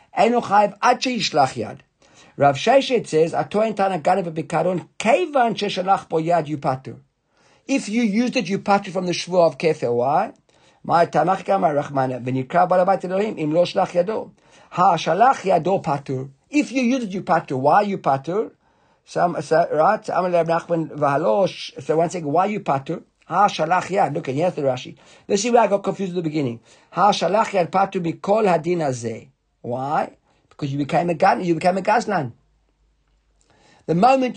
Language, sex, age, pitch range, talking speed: English, male, 50-69, 145-195 Hz, 175 wpm